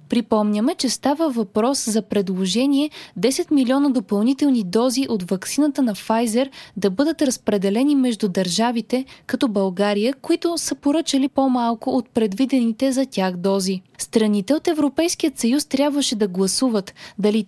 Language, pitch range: Bulgarian, 210-275 Hz